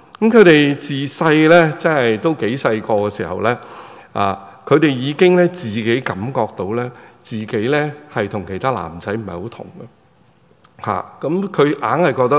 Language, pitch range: Chinese, 105-145 Hz